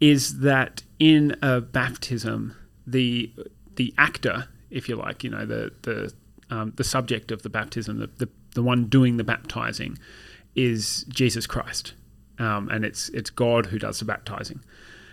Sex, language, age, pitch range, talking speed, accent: male, English, 30-49, 115-130 Hz, 160 wpm, Australian